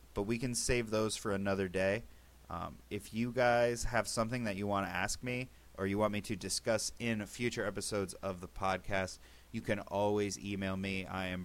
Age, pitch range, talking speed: 30-49, 95-115 Hz, 205 wpm